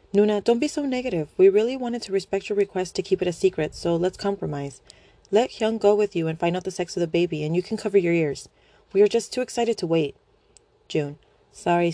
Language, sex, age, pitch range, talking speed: English, female, 30-49, 155-210 Hz, 240 wpm